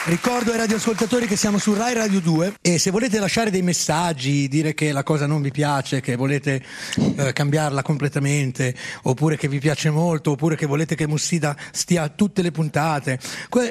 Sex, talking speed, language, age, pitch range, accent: male, 190 wpm, Italian, 30-49, 145-215 Hz, native